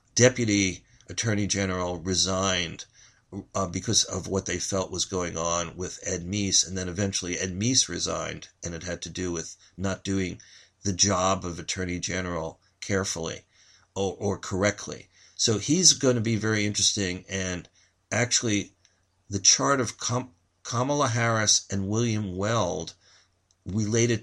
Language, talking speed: English, 140 wpm